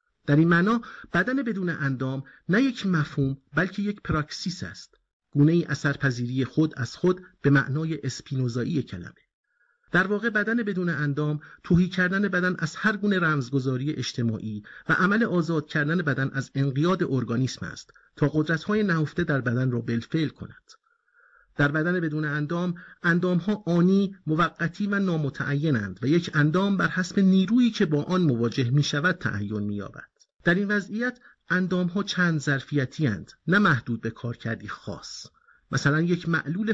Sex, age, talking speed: male, 50-69, 150 wpm